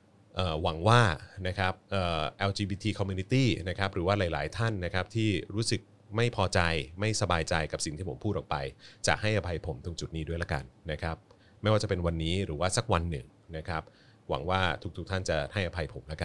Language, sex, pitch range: Thai, male, 85-110 Hz